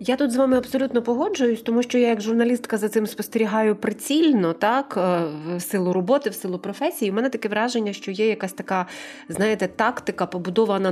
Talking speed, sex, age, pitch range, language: 180 wpm, female, 30-49, 185-235 Hz, Ukrainian